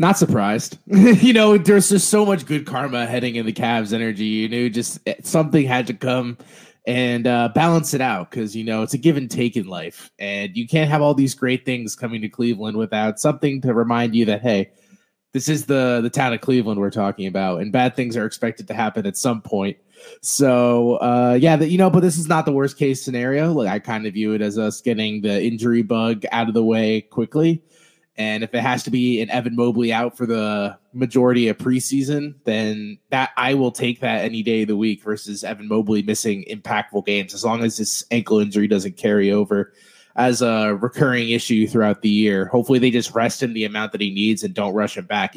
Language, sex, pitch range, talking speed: English, male, 110-135 Hz, 225 wpm